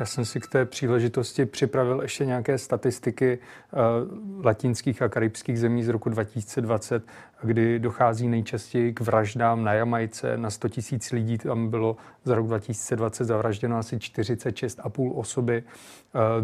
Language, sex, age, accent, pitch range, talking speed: Czech, male, 30-49, native, 115-125 Hz, 140 wpm